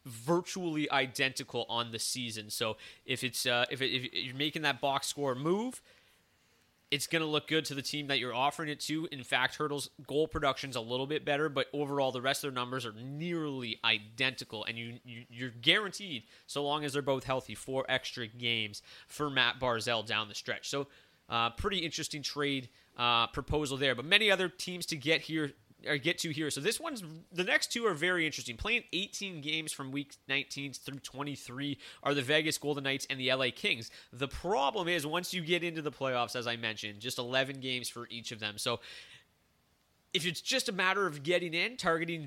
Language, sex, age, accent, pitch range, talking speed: English, male, 30-49, American, 125-155 Hz, 205 wpm